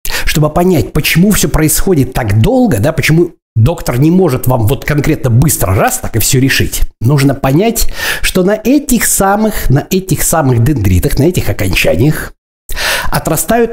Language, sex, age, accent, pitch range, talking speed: Russian, male, 60-79, native, 125-185 Hz, 150 wpm